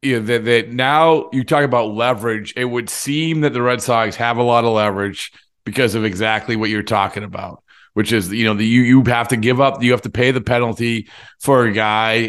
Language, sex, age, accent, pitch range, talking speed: English, male, 40-59, American, 110-140 Hz, 235 wpm